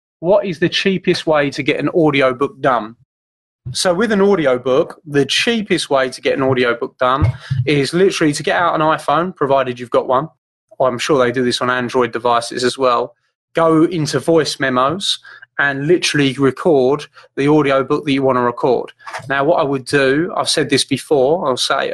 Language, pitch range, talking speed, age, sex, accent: English, 125-150 Hz, 185 wpm, 30-49, male, British